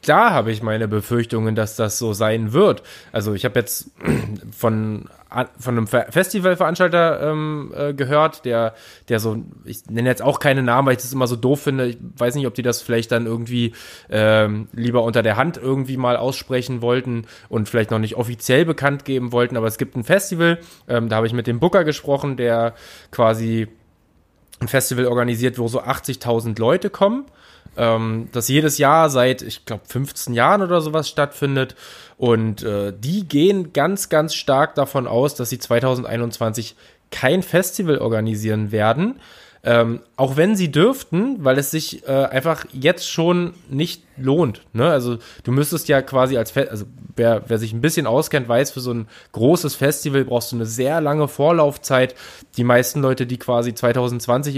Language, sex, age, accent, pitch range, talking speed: German, male, 20-39, German, 115-145 Hz, 175 wpm